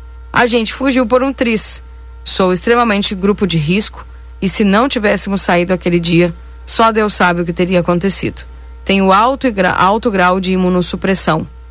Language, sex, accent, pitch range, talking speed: Portuguese, female, Brazilian, 175-220 Hz, 155 wpm